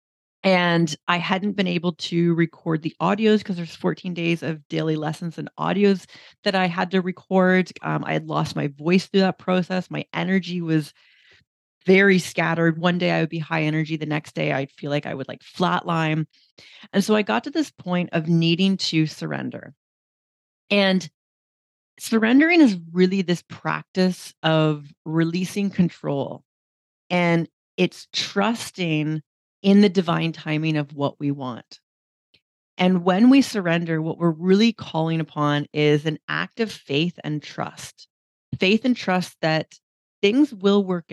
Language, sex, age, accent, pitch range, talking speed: English, female, 30-49, American, 155-190 Hz, 160 wpm